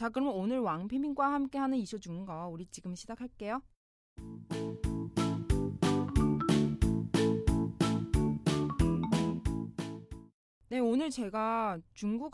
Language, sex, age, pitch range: Korean, female, 20-39, 175-260 Hz